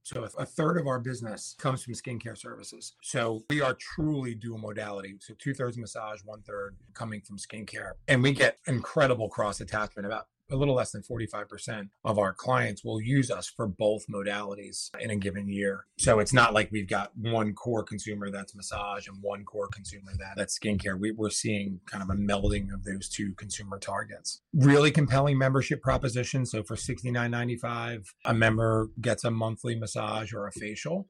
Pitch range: 105-130 Hz